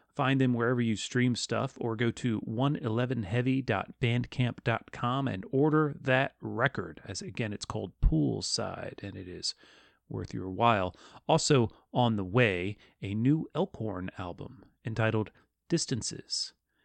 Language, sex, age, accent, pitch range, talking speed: English, male, 30-49, American, 115-145 Hz, 125 wpm